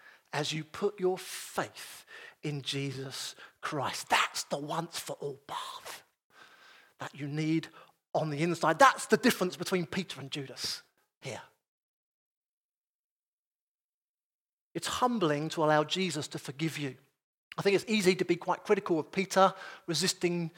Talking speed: 135 wpm